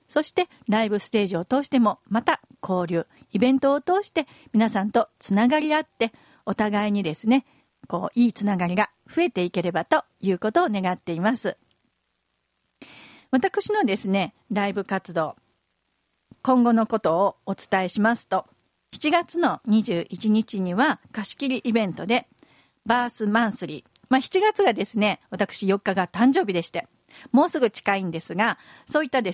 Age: 50-69